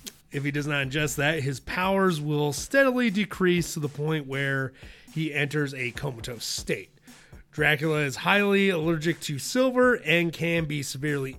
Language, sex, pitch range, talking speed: English, male, 135-180 Hz, 160 wpm